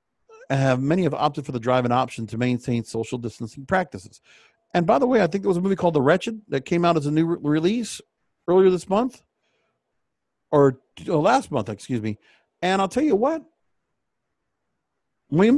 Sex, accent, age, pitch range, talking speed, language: male, American, 50-69, 125-180 Hz, 190 wpm, English